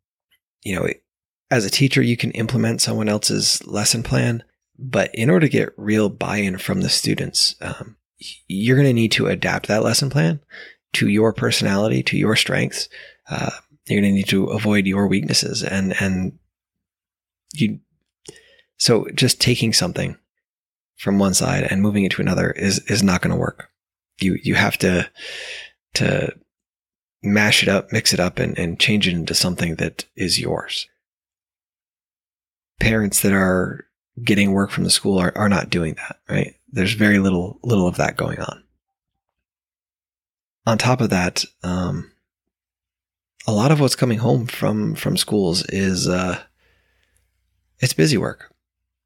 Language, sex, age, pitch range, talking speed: English, male, 20-39, 90-115 Hz, 160 wpm